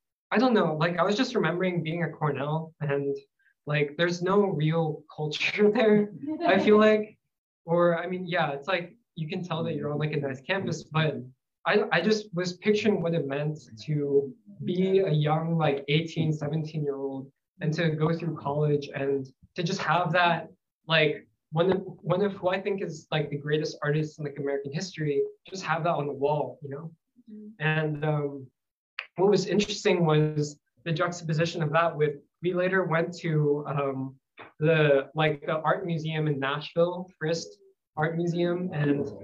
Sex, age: male, 20-39